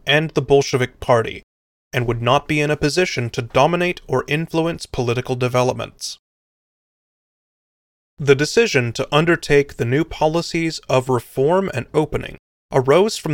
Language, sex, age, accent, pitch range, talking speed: English, male, 30-49, American, 125-170 Hz, 135 wpm